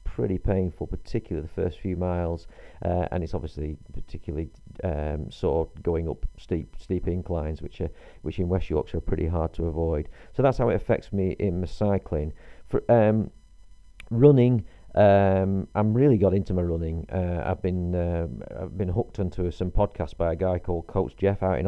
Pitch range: 80-95 Hz